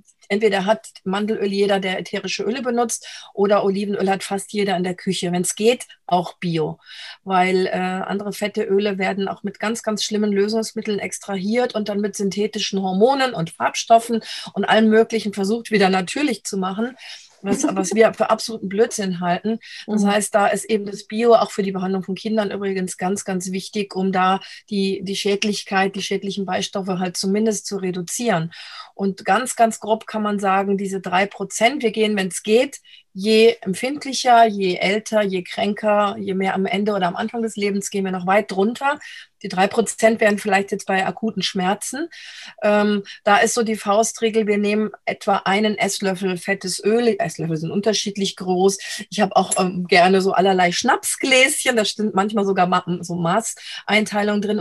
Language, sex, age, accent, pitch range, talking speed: German, female, 40-59, German, 190-220 Hz, 175 wpm